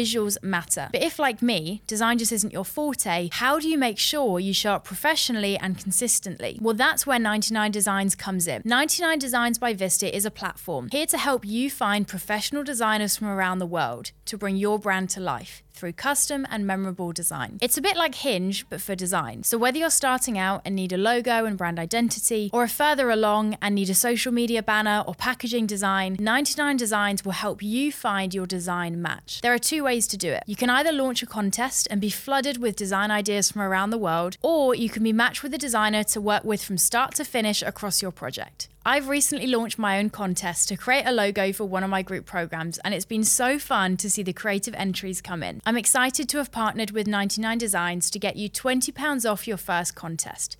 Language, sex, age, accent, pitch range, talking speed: English, female, 20-39, British, 190-250 Hz, 215 wpm